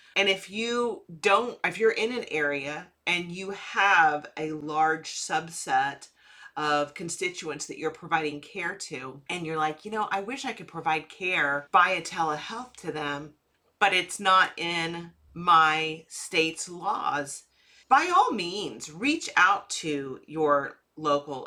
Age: 40-59